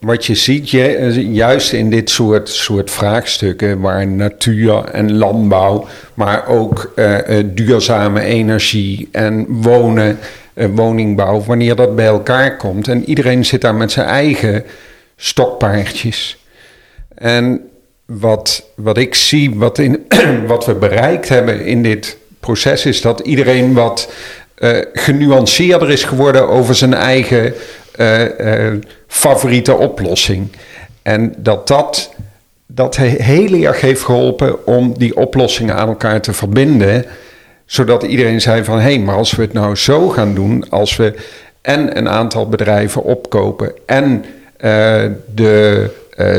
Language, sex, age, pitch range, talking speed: Dutch, male, 50-69, 105-125 Hz, 135 wpm